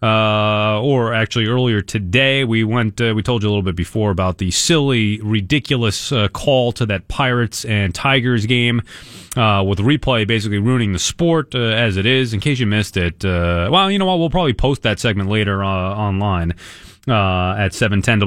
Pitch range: 105-135 Hz